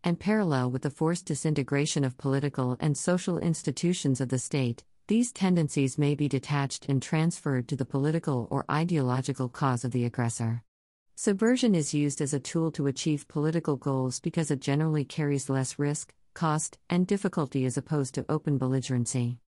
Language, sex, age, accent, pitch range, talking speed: English, female, 40-59, American, 130-165 Hz, 165 wpm